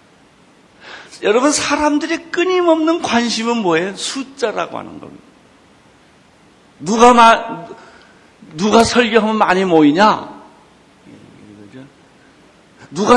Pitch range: 170-255 Hz